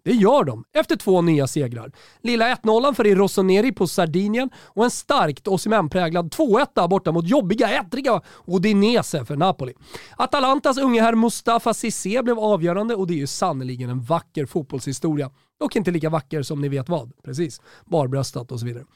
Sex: male